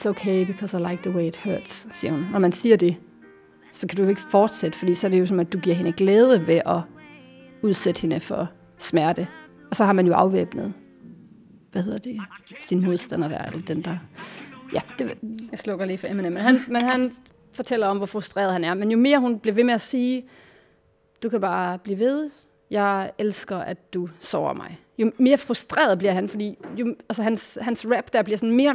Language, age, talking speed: Danish, 30-49, 210 wpm